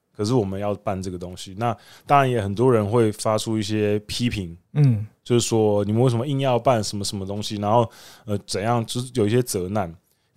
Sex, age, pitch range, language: male, 20-39, 100-135 Hz, Chinese